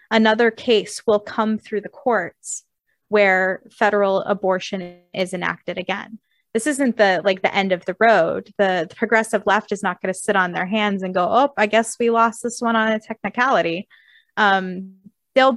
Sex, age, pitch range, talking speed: female, 20-39, 190-220 Hz, 185 wpm